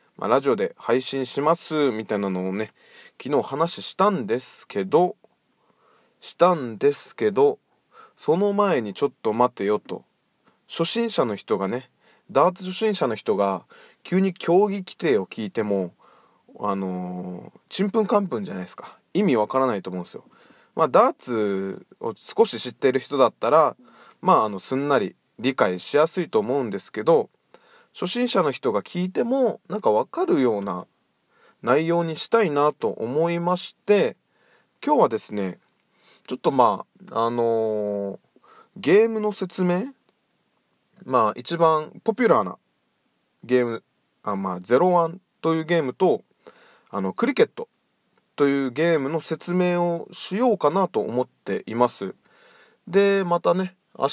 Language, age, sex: Japanese, 20-39, male